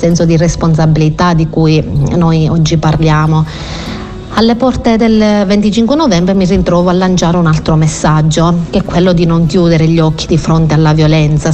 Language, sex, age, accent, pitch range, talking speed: Italian, female, 40-59, native, 160-190 Hz, 165 wpm